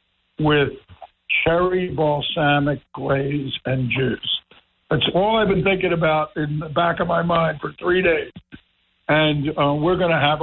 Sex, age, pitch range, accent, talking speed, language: male, 60-79, 135-160 Hz, American, 155 wpm, English